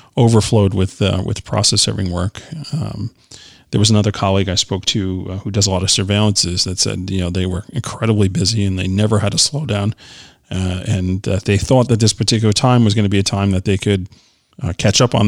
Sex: male